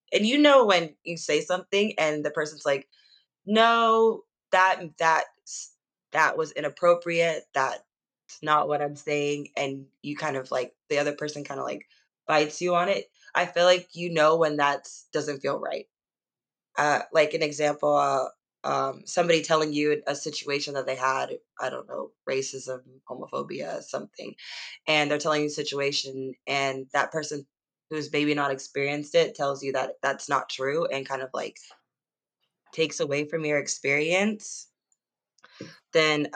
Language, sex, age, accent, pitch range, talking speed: English, female, 20-39, American, 140-170 Hz, 160 wpm